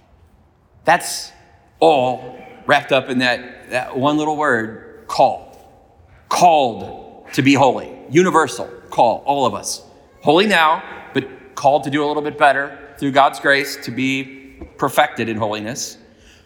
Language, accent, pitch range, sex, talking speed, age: English, American, 130-170 Hz, male, 140 wpm, 40-59